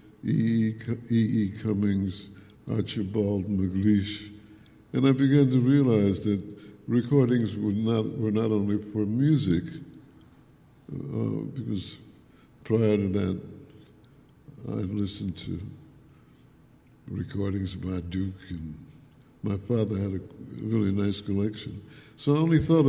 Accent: American